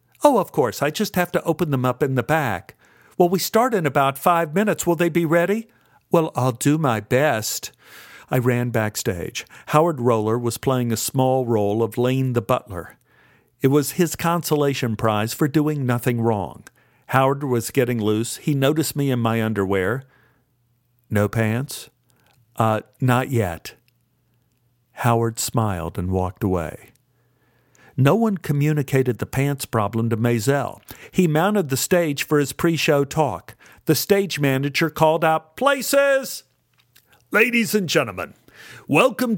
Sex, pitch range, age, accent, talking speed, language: male, 120-170 Hz, 50-69, American, 150 wpm, English